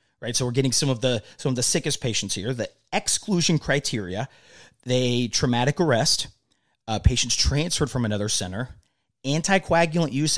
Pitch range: 110-140 Hz